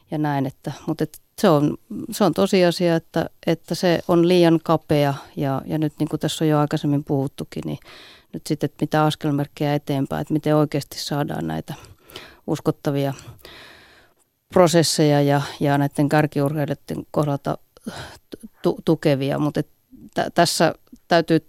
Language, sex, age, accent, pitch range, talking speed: Finnish, female, 30-49, native, 145-160 Hz, 140 wpm